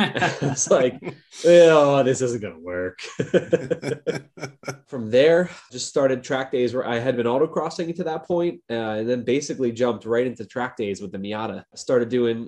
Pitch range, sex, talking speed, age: 110-135 Hz, male, 180 wpm, 20-39